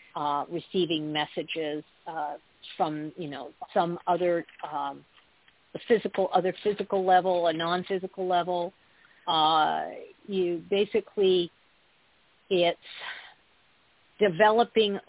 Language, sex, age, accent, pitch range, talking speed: English, female, 50-69, American, 165-195 Hz, 90 wpm